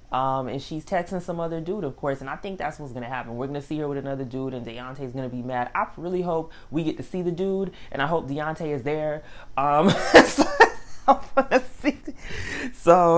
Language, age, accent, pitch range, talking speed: English, 20-39, American, 130-180 Hz, 230 wpm